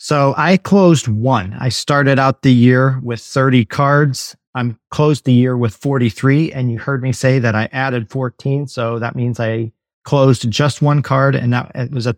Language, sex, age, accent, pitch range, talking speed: English, male, 40-59, American, 115-130 Hz, 190 wpm